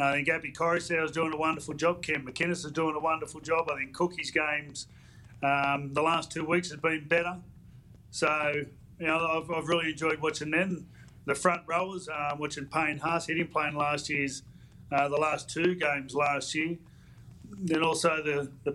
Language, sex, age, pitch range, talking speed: English, male, 30-49, 145-170 Hz, 200 wpm